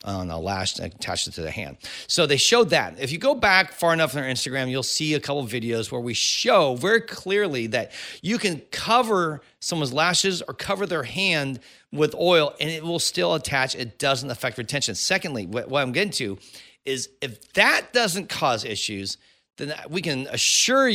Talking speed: 195 wpm